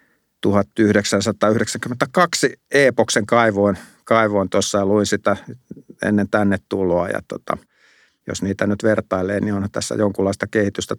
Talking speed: 125 wpm